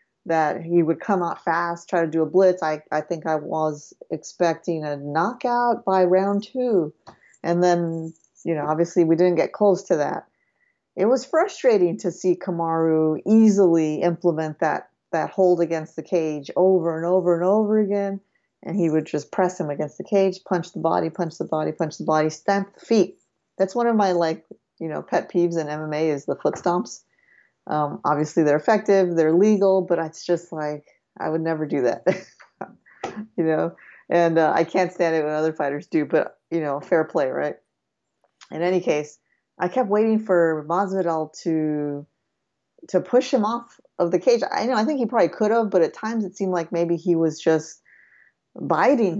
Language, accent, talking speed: English, American, 190 wpm